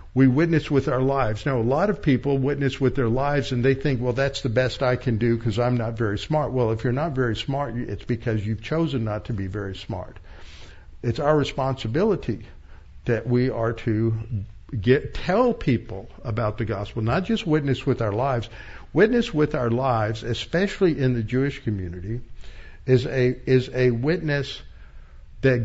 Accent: American